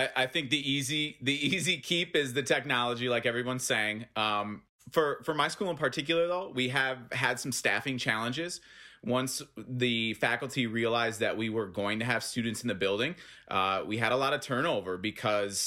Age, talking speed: 30-49, 190 wpm